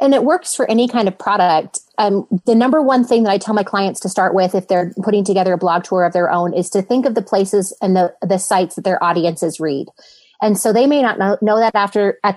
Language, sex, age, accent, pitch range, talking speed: English, female, 30-49, American, 185-215 Hz, 265 wpm